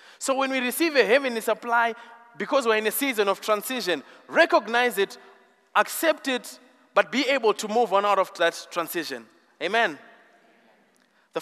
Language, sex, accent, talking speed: English, male, South African, 160 wpm